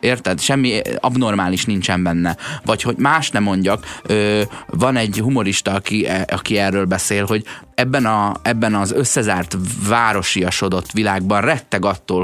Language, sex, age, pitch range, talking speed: Hungarian, male, 20-39, 95-120 Hz, 130 wpm